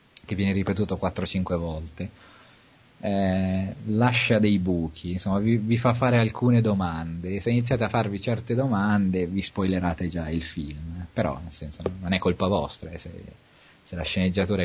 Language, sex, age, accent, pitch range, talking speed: English, male, 30-49, Italian, 90-110 Hz, 160 wpm